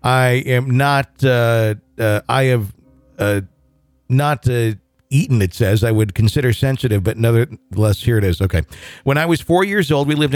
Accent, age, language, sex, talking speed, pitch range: American, 50-69, English, male, 180 wpm, 100-135 Hz